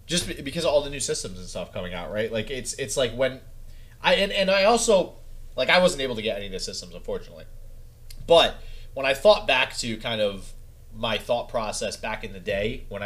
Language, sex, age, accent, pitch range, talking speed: English, male, 30-49, American, 100-150 Hz, 225 wpm